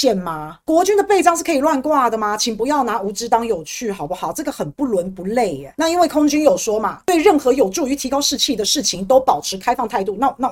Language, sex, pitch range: Chinese, female, 205-290 Hz